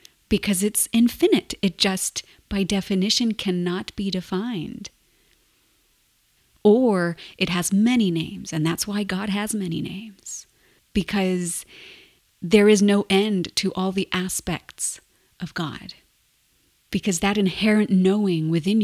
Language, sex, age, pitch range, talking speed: English, female, 30-49, 175-205 Hz, 120 wpm